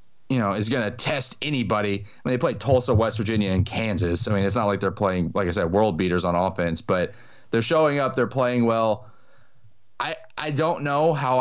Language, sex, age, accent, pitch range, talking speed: English, male, 30-49, American, 110-130 Hz, 220 wpm